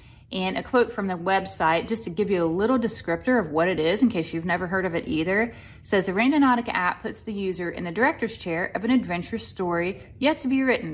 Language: English